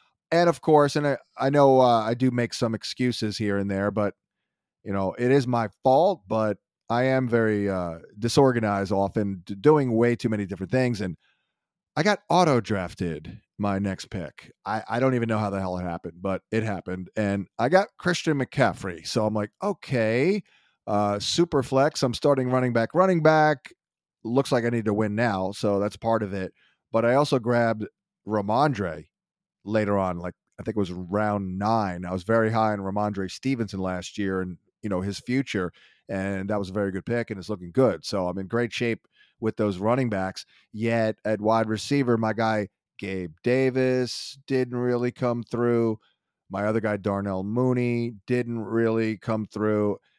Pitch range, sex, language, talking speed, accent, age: 100-125 Hz, male, English, 185 wpm, American, 30-49